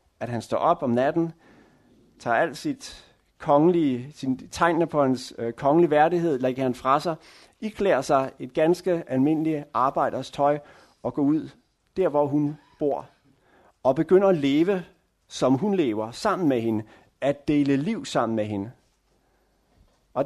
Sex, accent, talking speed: male, native, 150 wpm